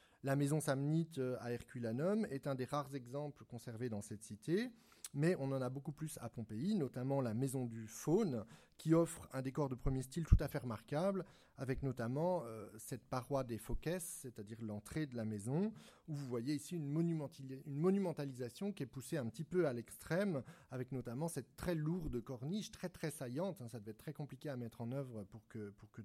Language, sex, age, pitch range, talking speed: French, male, 30-49, 120-165 Hz, 205 wpm